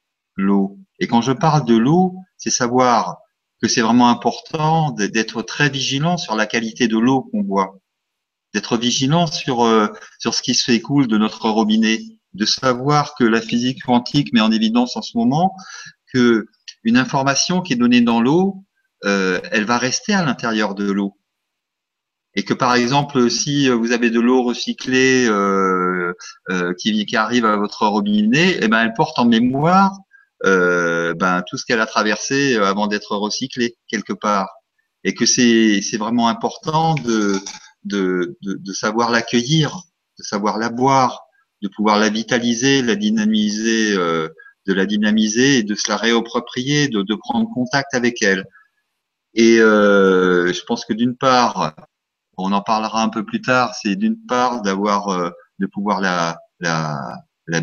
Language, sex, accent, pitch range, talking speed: French, male, French, 105-135 Hz, 165 wpm